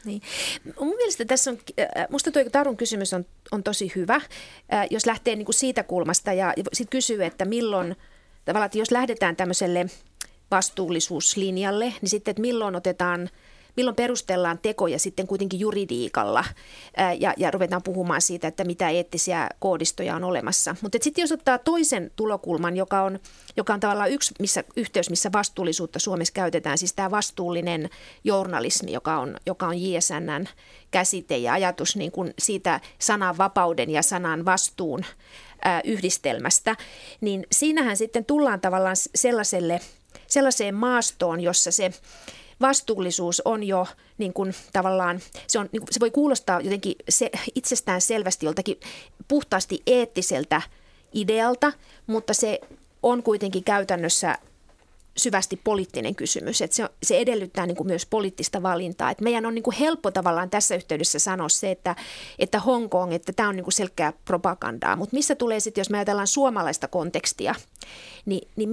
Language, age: Finnish, 30-49